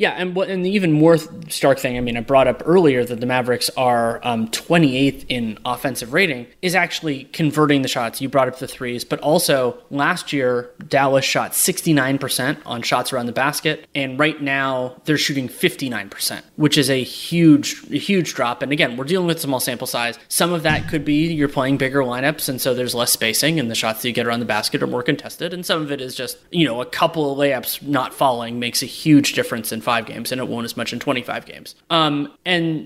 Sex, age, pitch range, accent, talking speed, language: male, 20-39, 125-160 Hz, American, 225 wpm, English